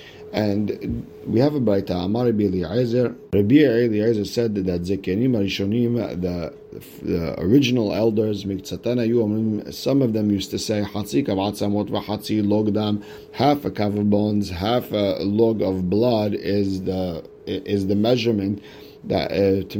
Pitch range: 100-120 Hz